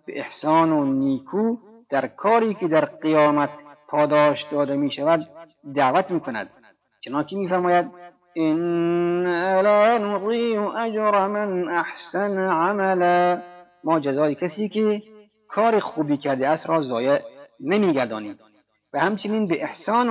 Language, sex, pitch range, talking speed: Persian, male, 155-205 Hz, 125 wpm